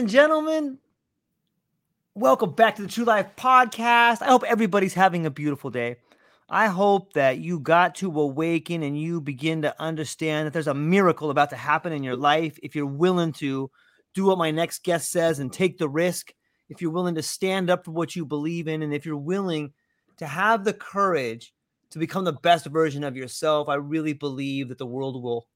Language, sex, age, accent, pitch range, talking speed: English, male, 30-49, American, 145-205 Hz, 195 wpm